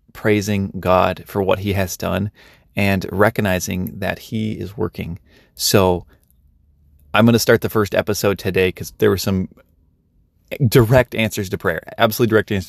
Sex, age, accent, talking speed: male, 30-49, American, 155 wpm